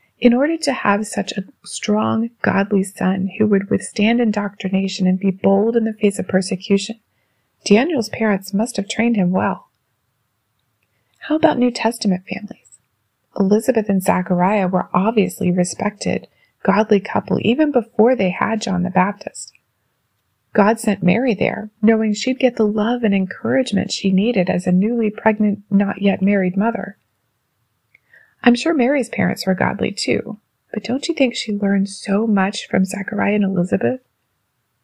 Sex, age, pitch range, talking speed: female, 30-49, 185-225 Hz, 150 wpm